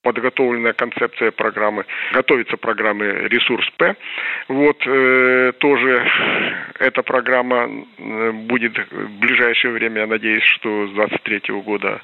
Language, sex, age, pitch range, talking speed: Russian, male, 40-59, 110-125 Hz, 105 wpm